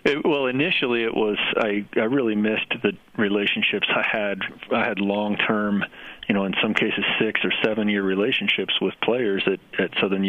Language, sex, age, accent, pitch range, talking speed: English, male, 40-59, American, 100-110 Hz, 175 wpm